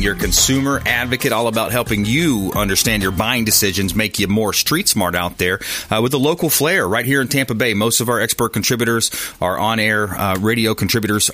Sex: male